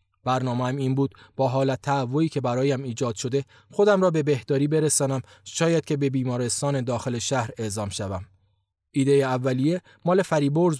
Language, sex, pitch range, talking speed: Persian, male, 115-155 Hz, 150 wpm